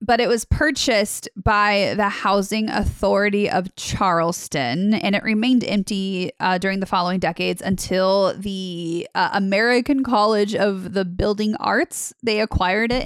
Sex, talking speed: female, 140 wpm